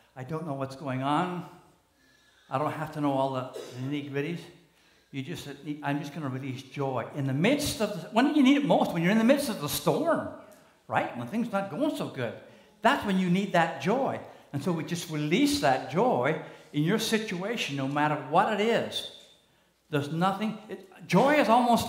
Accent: American